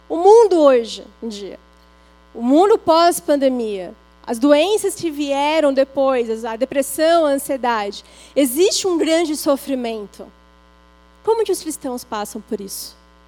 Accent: Brazilian